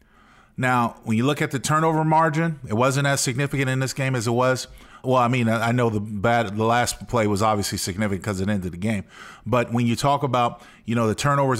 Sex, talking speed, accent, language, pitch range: male, 235 wpm, American, English, 110-140 Hz